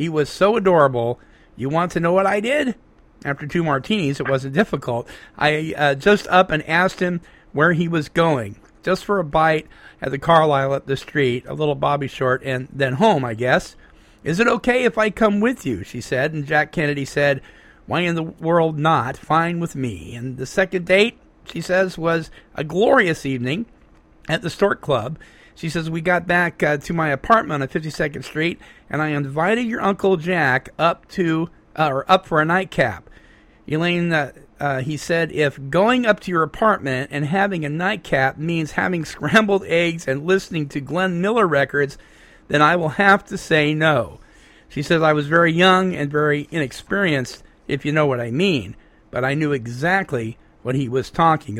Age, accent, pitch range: 50-69, American, 140-180 Hz